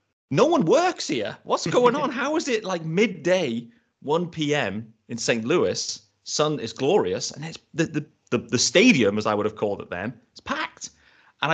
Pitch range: 110-155 Hz